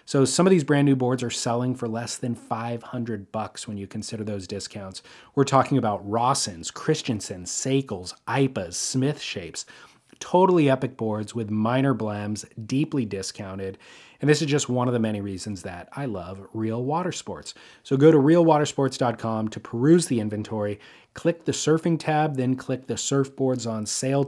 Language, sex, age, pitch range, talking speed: English, male, 30-49, 110-140 Hz, 170 wpm